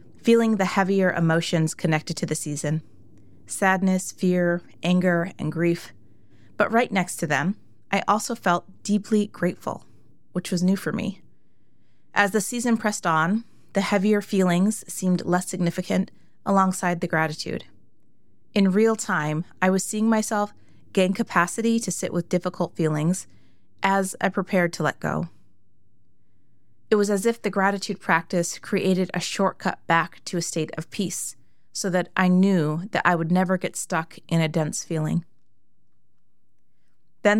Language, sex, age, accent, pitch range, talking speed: English, female, 30-49, American, 155-195 Hz, 150 wpm